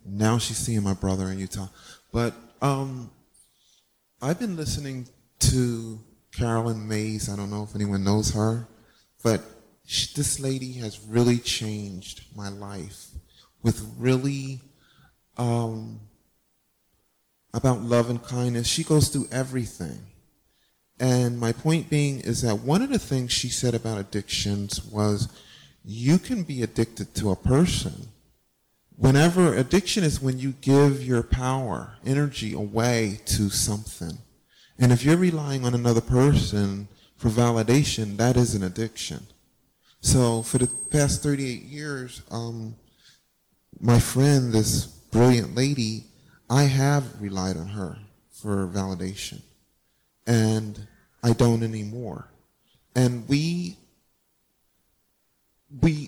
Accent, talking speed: American, 120 wpm